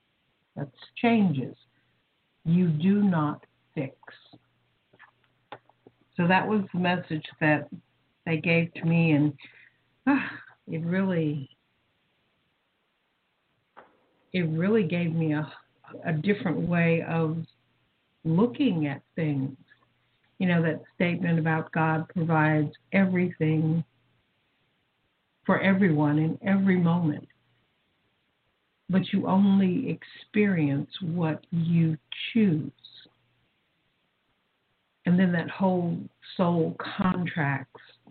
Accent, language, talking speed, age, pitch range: American, English, 90 wpm, 60-79, 150-185 Hz